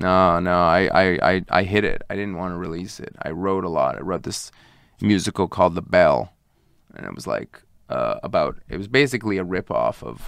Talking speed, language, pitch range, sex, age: 215 wpm, English, 90-105 Hz, male, 30-49